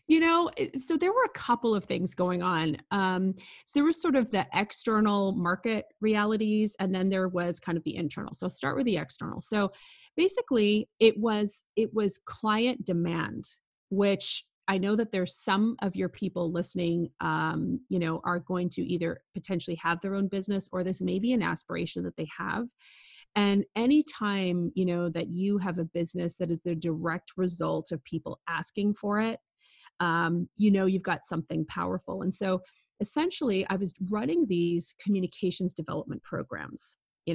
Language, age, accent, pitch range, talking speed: English, 30-49, American, 170-210 Hz, 180 wpm